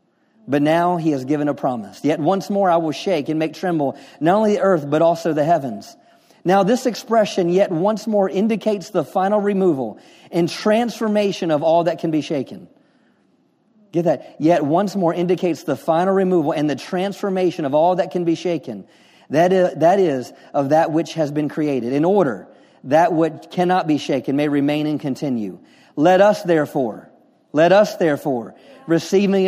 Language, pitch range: English, 150-195 Hz